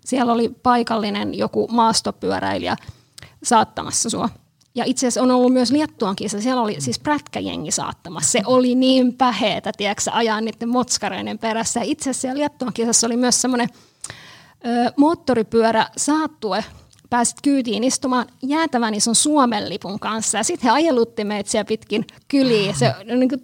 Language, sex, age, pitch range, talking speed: Finnish, female, 20-39, 215-255 Hz, 140 wpm